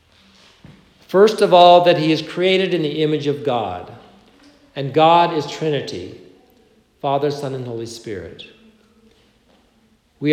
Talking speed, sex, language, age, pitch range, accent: 130 wpm, male, English, 60-79, 140-180 Hz, American